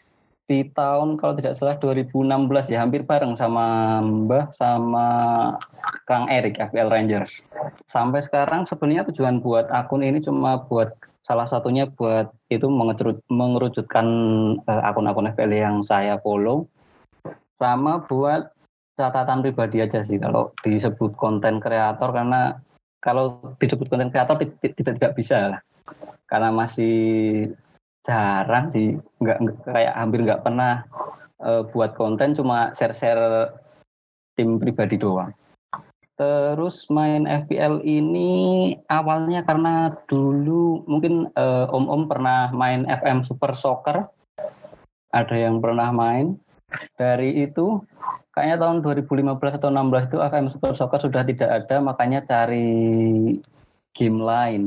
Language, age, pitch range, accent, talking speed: Indonesian, 20-39, 115-145 Hz, native, 120 wpm